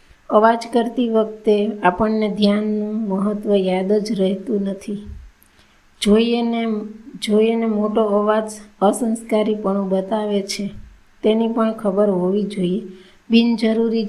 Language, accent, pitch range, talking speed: Gujarati, native, 200-220 Hz, 75 wpm